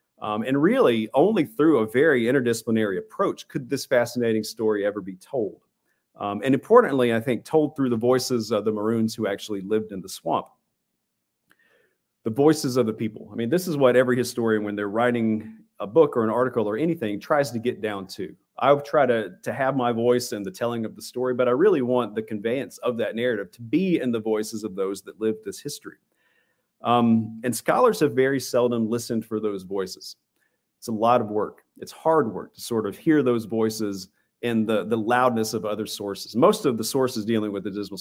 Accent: American